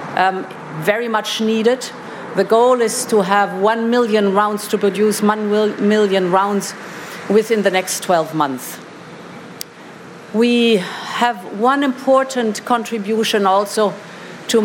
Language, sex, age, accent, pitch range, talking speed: English, female, 50-69, German, 195-225 Hz, 120 wpm